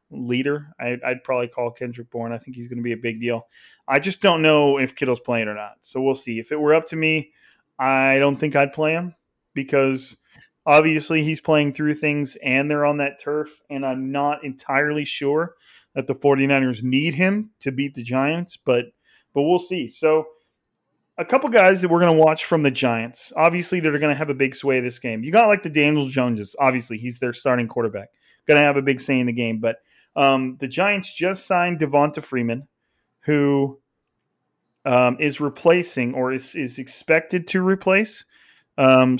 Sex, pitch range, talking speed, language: male, 130-155 Hz, 200 wpm, English